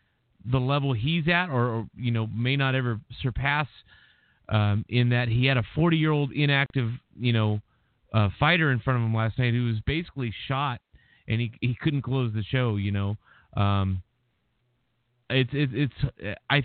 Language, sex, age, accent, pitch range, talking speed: English, male, 30-49, American, 115-140 Hz, 175 wpm